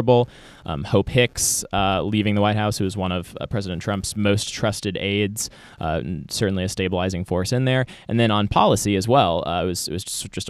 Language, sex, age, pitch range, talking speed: English, male, 20-39, 95-115 Hz, 205 wpm